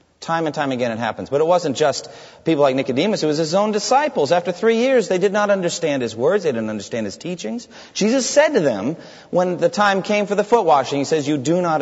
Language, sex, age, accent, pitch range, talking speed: English, male, 40-59, American, 125-200 Hz, 250 wpm